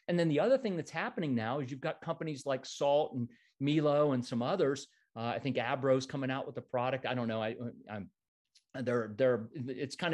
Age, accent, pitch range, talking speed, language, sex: 50-69, American, 120-150 Hz, 220 wpm, English, male